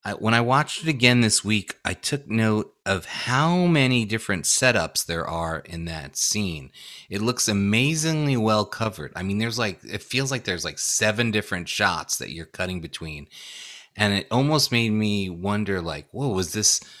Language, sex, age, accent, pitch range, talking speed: English, male, 30-49, American, 90-115 Hz, 180 wpm